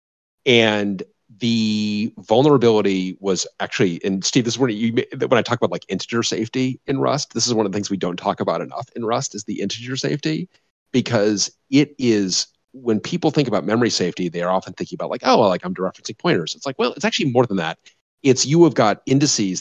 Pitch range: 95-135 Hz